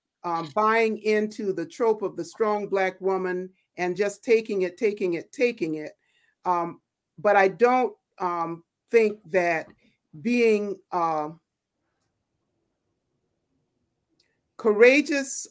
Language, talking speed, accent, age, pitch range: English, 110 wpm, American, 50-69, 180-225 Hz